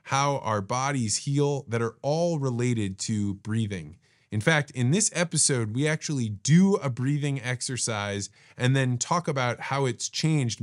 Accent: American